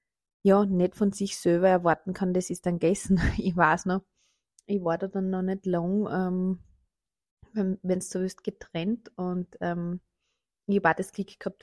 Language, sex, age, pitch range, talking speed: German, female, 20-39, 165-190 Hz, 170 wpm